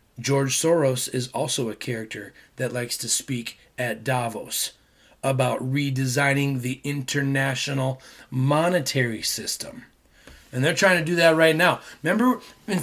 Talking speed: 130 wpm